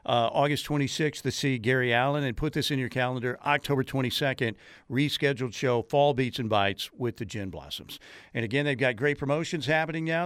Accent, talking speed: American, 195 wpm